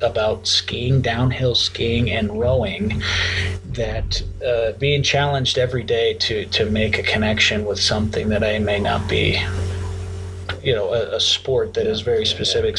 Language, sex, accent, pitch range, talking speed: English, male, American, 100-135 Hz, 155 wpm